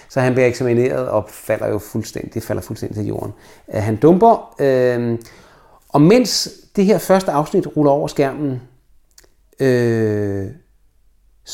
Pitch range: 115-160 Hz